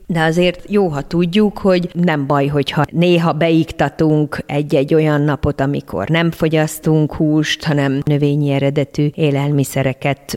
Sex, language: female, Hungarian